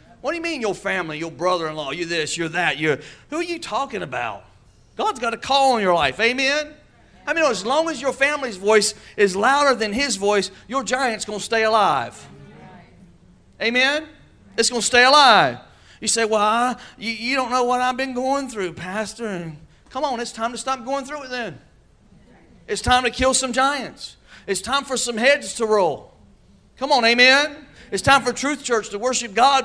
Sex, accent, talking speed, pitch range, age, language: male, American, 200 wpm, 215-275 Hz, 40-59, English